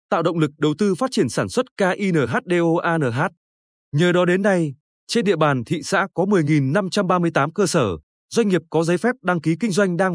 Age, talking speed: 20-39, 195 wpm